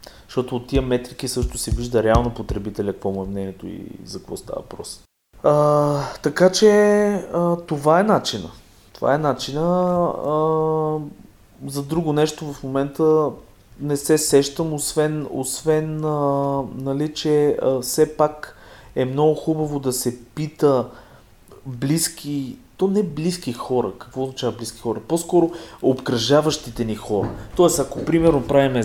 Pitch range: 110-150 Hz